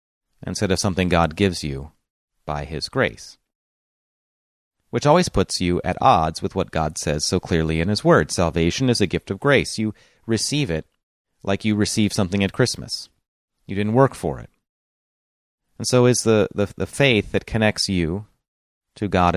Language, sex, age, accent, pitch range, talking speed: English, male, 30-49, American, 85-115 Hz, 175 wpm